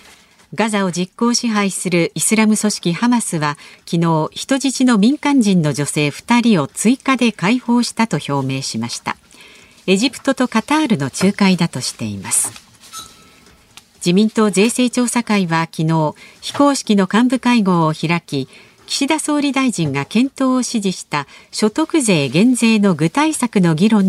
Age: 50-69